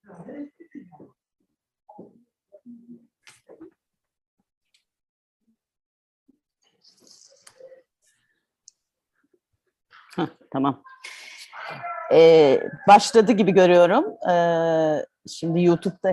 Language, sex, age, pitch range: Turkish, female, 30-49, 180-290 Hz